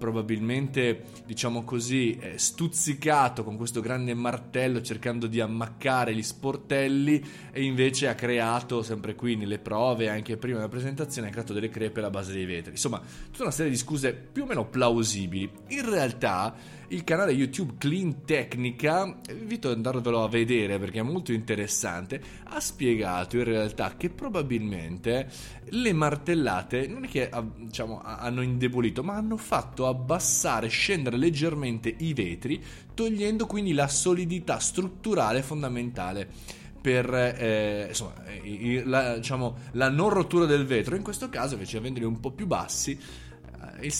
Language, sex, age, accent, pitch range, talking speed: Italian, male, 20-39, native, 110-140 Hz, 145 wpm